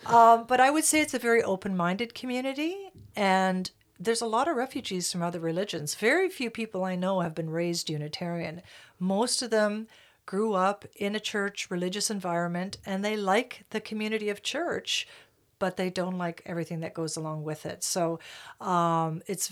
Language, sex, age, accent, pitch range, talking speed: English, female, 50-69, American, 170-210 Hz, 180 wpm